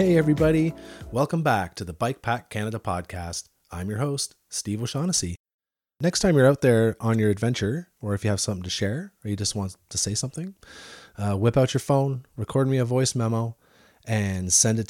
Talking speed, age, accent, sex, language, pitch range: 200 wpm, 30-49, American, male, English, 100-125 Hz